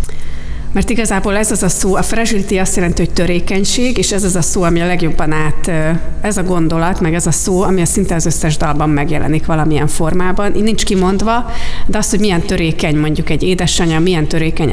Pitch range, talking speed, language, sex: 160-200 Hz, 205 wpm, Hungarian, female